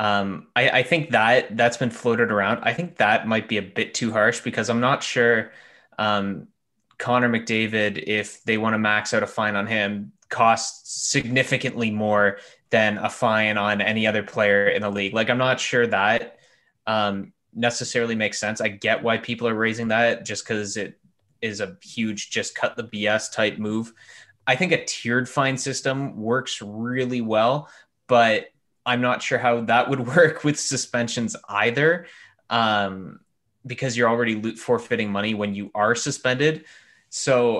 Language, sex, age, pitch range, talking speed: English, male, 20-39, 105-125 Hz, 170 wpm